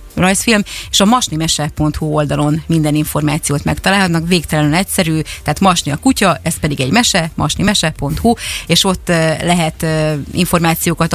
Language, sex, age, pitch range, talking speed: Hungarian, female, 30-49, 155-180 Hz, 125 wpm